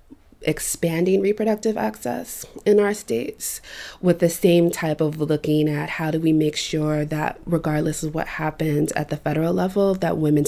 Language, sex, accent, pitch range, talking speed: English, female, American, 145-175 Hz, 165 wpm